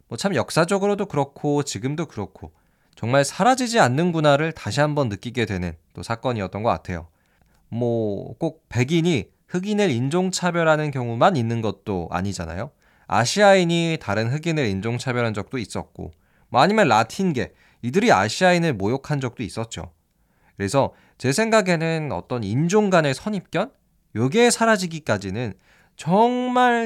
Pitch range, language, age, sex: 100-165 Hz, Korean, 20-39, male